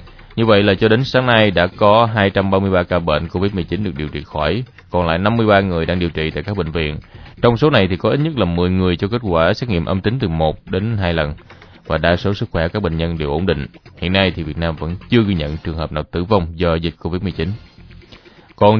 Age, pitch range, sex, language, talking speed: 20-39, 85-110 Hz, male, Vietnamese, 250 wpm